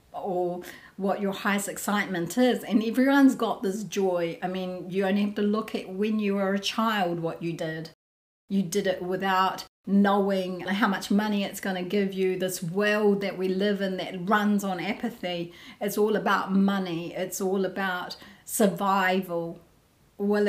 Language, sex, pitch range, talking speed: English, female, 180-205 Hz, 175 wpm